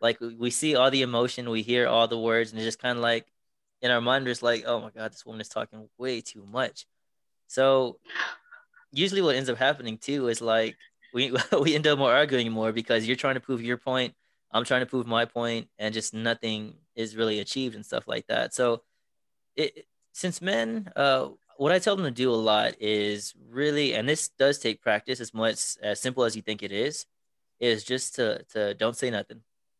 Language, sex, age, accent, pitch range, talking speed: English, male, 20-39, American, 110-125 Hz, 215 wpm